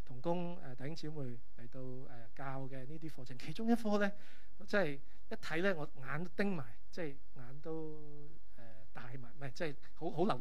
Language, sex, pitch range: Chinese, male, 125-165 Hz